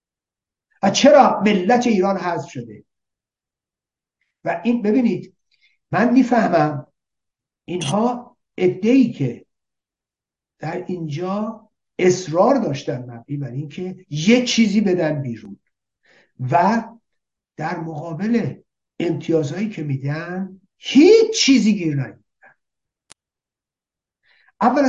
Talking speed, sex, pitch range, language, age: 85 wpm, male, 145-230 Hz, Persian, 60-79